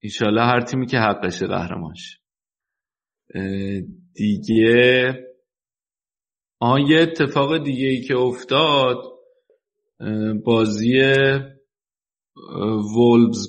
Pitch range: 105-135 Hz